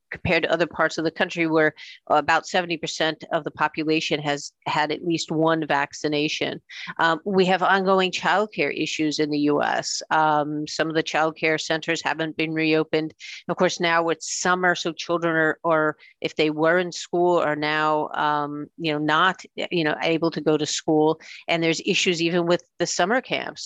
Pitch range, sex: 155-175 Hz, female